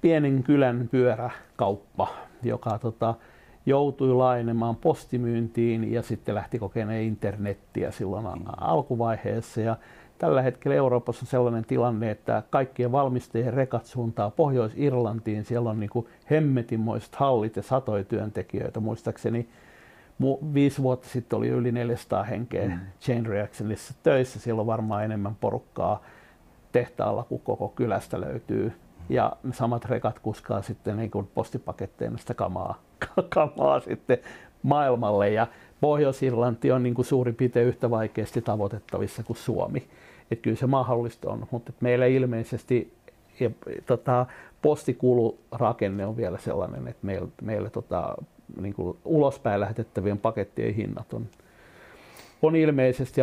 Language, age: Finnish, 60-79